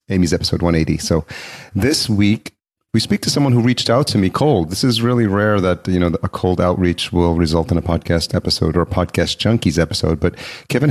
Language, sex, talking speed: English, male, 215 wpm